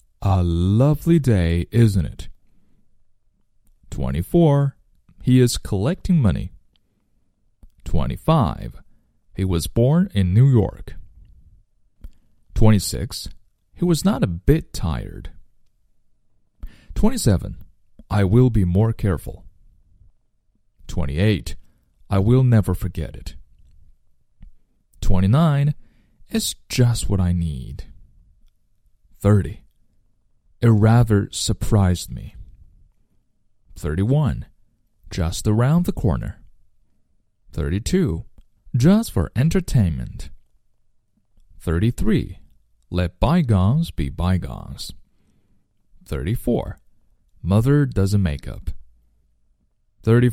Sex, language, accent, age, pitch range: male, Chinese, American, 40-59, 90-115 Hz